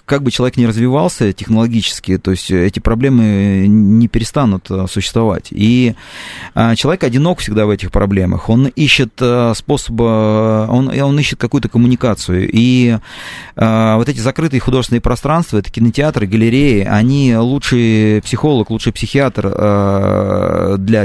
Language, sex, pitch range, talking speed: Russian, male, 105-125 Hz, 125 wpm